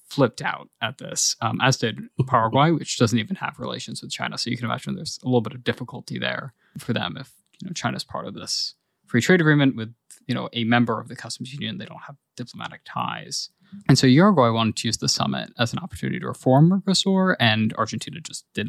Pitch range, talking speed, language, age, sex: 115-145 Hz, 220 wpm, English, 20-39, male